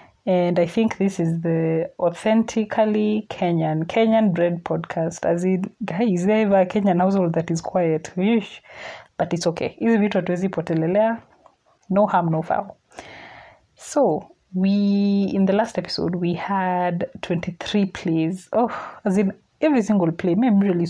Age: 20-39